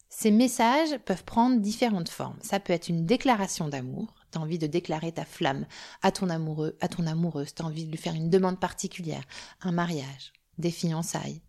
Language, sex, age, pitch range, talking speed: French, female, 30-49, 165-220 Hz, 190 wpm